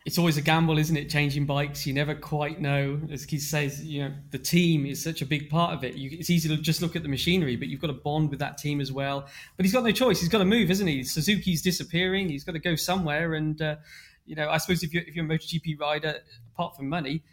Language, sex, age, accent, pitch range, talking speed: English, male, 20-39, British, 140-165 Hz, 275 wpm